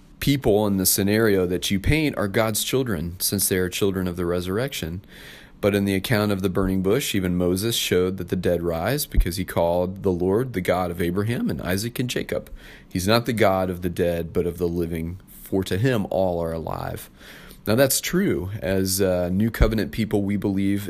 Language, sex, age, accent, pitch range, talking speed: English, male, 30-49, American, 90-105 Hz, 205 wpm